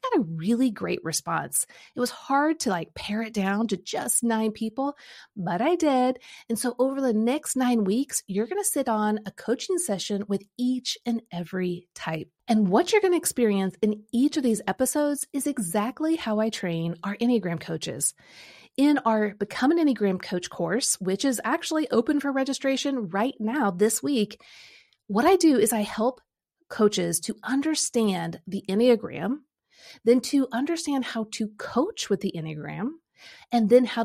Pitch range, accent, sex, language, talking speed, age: 190-265 Hz, American, female, English, 175 wpm, 30-49